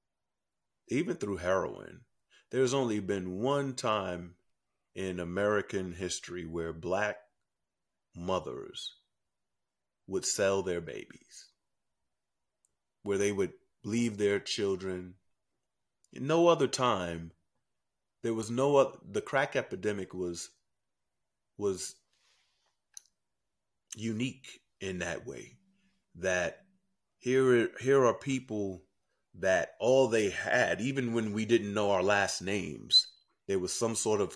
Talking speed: 110 wpm